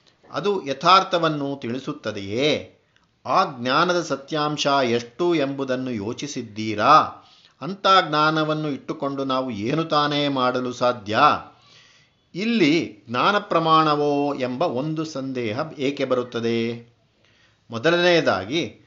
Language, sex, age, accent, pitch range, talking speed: Kannada, male, 50-69, native, 125-165 Hz, 85 wpm